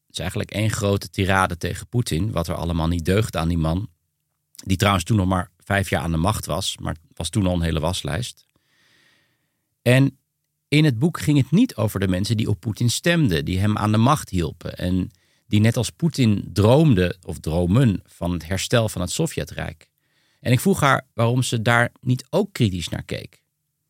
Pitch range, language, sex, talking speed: 95-140 Hz, Dutch, male, 200 wpm